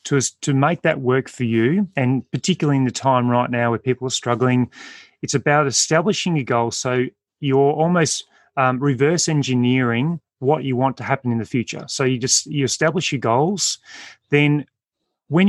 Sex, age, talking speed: male, 30-49, 180 wpm